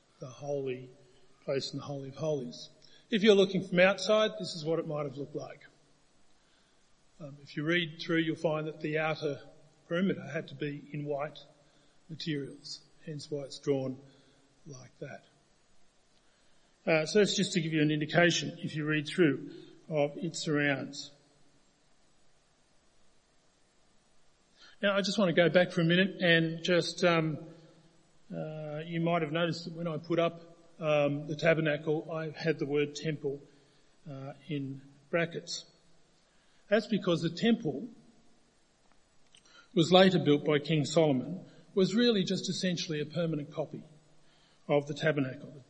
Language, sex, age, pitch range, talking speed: English, male, 40-59, 150-180 Hz, 150 wpm